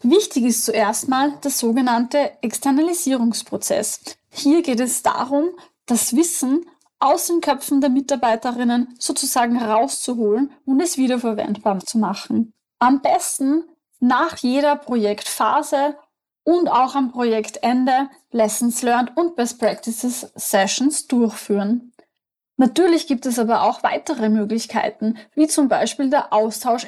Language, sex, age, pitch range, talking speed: German, female, 10-29, 225-285 Hz, 120 wpm